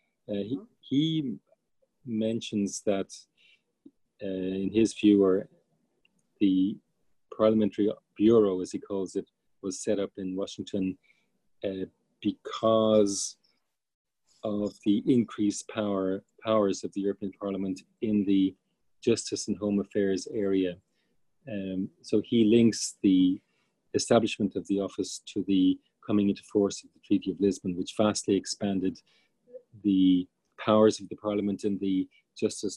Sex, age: male, 40-59